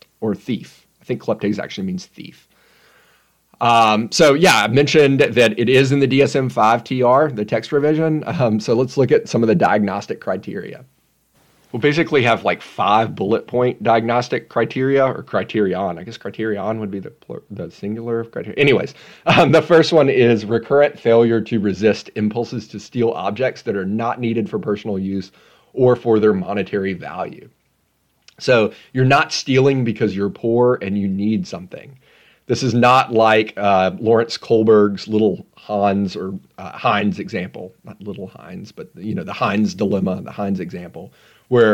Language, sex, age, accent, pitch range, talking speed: English, male, 30-49, American, 105-130 Hz, 165 wpm